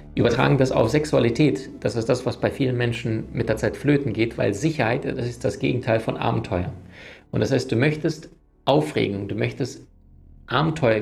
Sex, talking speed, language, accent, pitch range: male, 180 wpm, German, German, 110-140 Hz